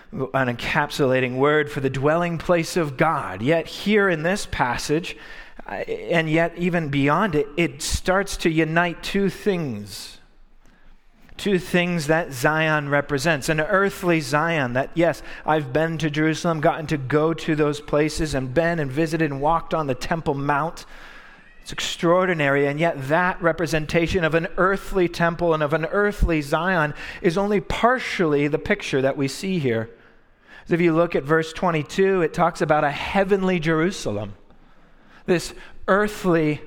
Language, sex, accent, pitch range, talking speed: English, male, American, 150-180 Hz, 150 wpm